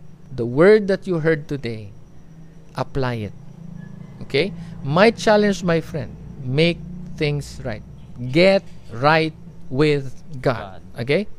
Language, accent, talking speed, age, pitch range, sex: English, Filipino, 110 wpm, 50-69, 130-195 Hz, male